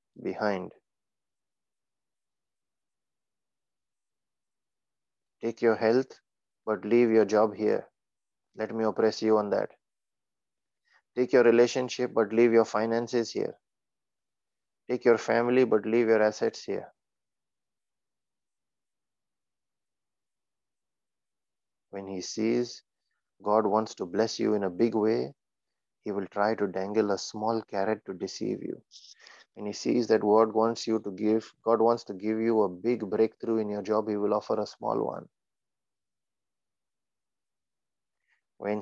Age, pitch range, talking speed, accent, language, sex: 30-49, 105-115 Hz, 125 wpm, Indian, English, male